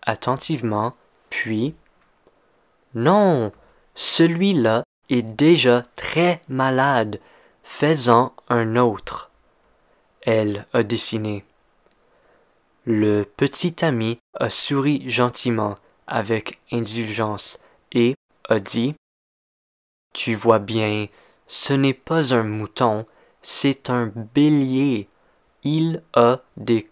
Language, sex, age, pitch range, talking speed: French, male, 20-39, 110-135 Hz, 85 wpm